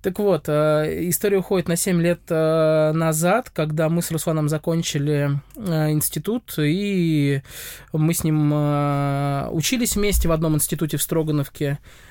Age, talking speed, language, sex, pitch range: 20-39, 125 wpm, Russian, male, 145-175 Hz